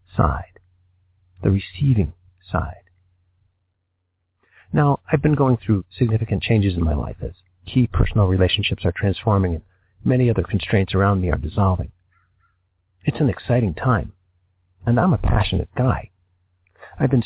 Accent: American